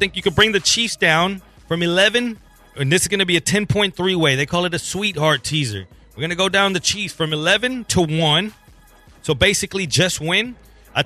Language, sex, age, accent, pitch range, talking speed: English, male, 30-49, American, 170-215 Hz, 220 wpm